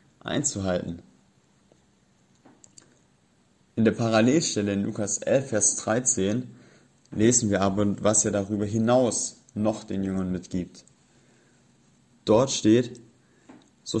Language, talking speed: German, 100 wpm